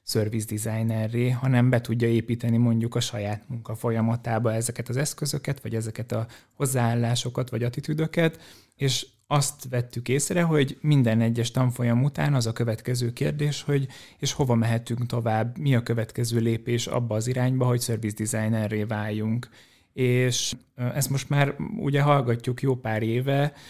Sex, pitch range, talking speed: male, 115-125 Hz, 145 wpm